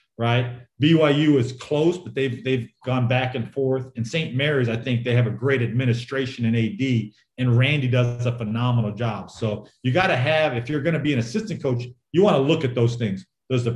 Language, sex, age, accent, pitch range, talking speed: English, male, 40-59, American, 115-135 Hz, 225 wpm